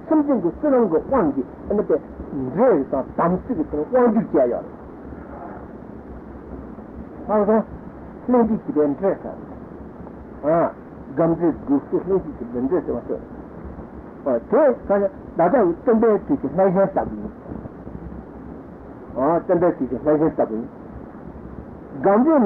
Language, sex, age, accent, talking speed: Italian, male, 60-79, Indian, 60 wpm